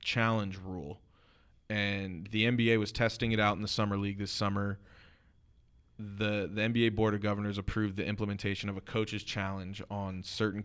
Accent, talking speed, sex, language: American, 170 wpm, male, English